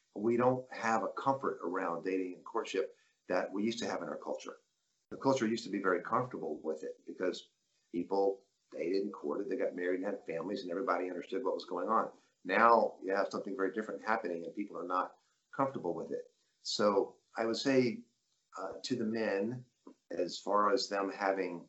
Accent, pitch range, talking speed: American, 100-135 Hz, 195 wpm